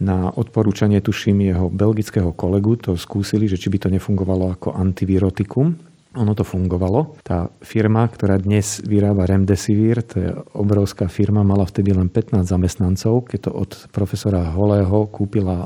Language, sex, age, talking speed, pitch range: Slovak, male, 40-59, 150 wpm, 95-105 Hz